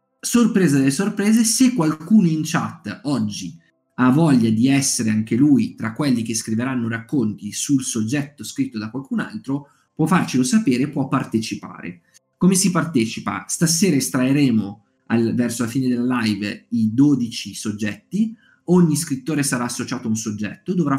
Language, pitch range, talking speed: Italian, 115-165 Hz, 150 wpm